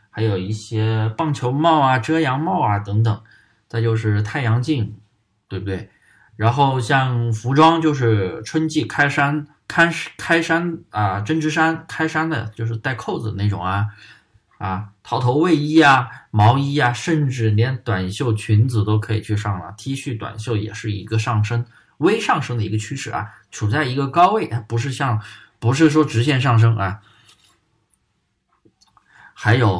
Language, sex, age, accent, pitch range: Chinese, male, 20-39, native, 105-135 Hz